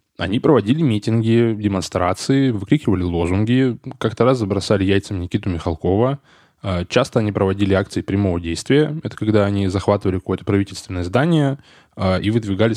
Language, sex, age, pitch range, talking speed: Russian, male, 10-29, 95-120 Hz, 125 wpm